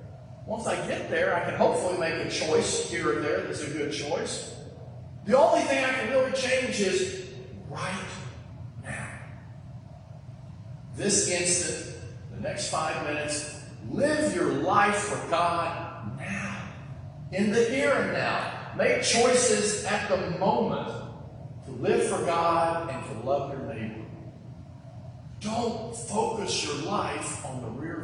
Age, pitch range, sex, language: 40-59, 125-180 Hz, male, English